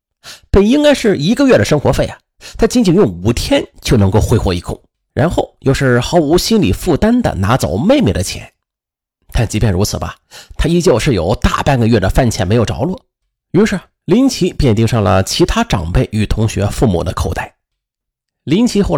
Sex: male